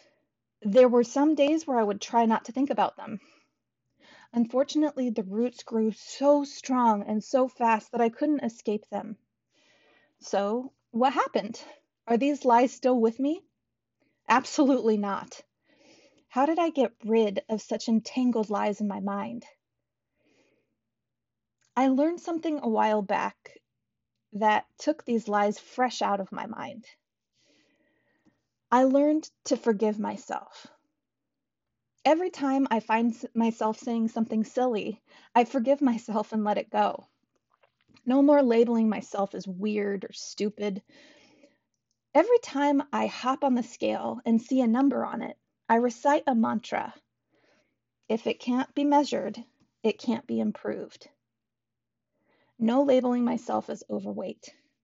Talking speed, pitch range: 135 wpm, 215-275 Hz